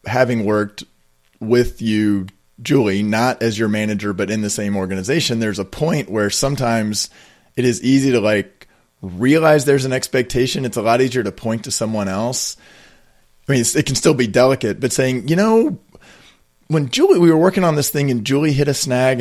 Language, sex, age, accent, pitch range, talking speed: English, male, 30-49, American, 105-135 Hz, 190 wpm